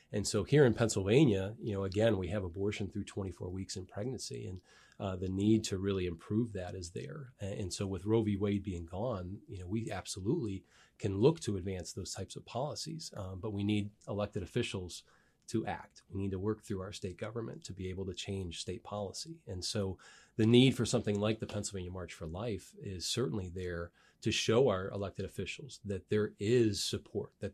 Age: 30-49